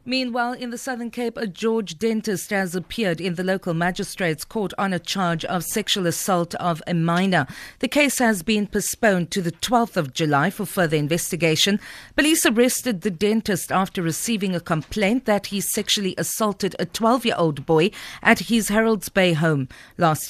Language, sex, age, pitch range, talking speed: English, female, 40-59, 170-215 Hz, 170 wpm